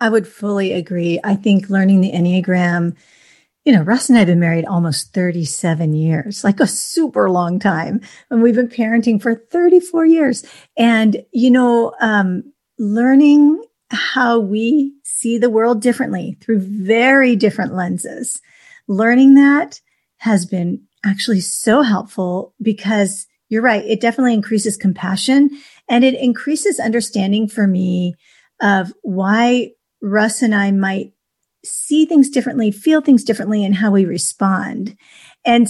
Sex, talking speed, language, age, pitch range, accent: female, 140 wpm, English, 40-59, 195-245 Hz, American